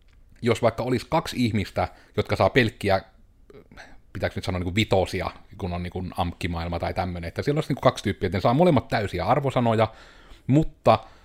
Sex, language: male, Finnish